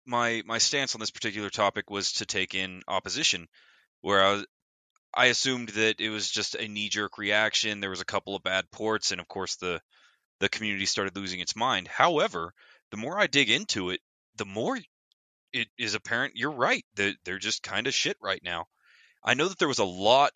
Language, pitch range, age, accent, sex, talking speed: English, 100-125 Hz, 20-39, American, male, 205 wpm